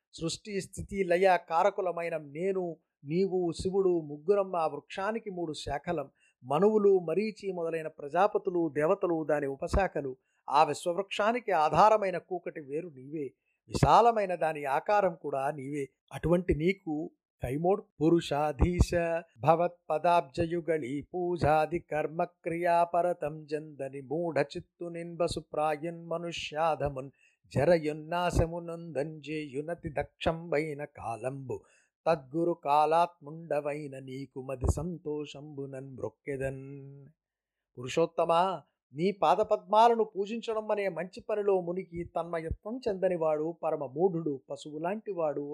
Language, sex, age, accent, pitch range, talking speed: Telugu, male, 50-69, native, 150-185 Hz, 85 wpm